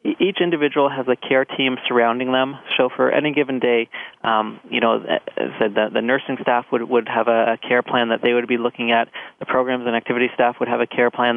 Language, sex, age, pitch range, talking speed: English, male, 20-39, 115-130 Hz, 220 wpm